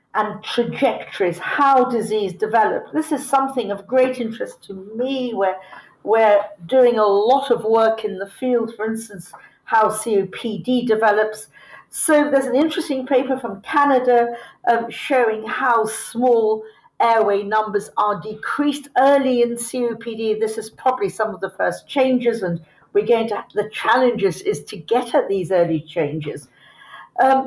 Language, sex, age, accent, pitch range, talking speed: English, female, 50-69, British, 205-255 Hz, 150 wpm